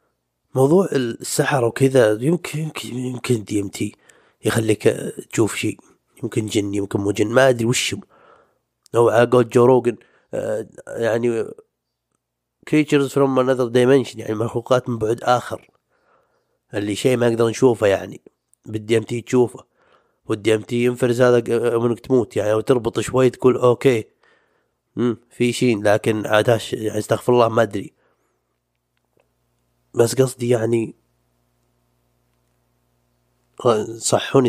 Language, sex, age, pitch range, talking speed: Arabic, male, 30-49, 100-120 Hz, 115 wpm